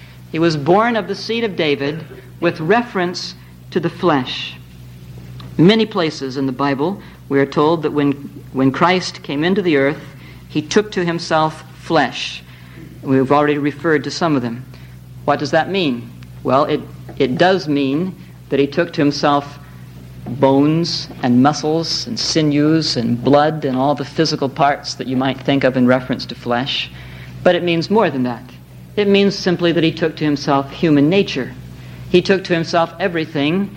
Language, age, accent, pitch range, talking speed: English, 50-69, American, 125-175 Hz, 170 wpm